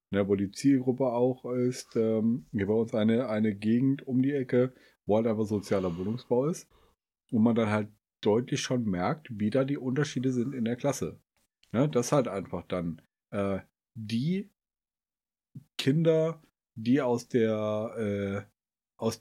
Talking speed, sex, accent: 150 wpm, male, German